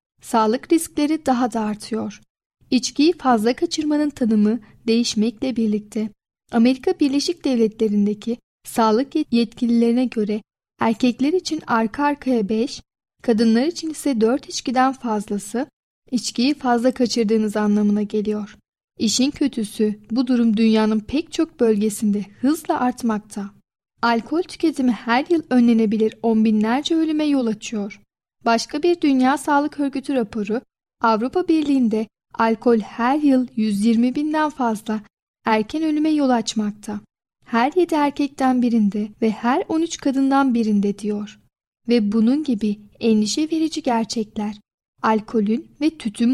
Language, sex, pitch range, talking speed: Turkish, female, 220-275 Hz, 115 wpm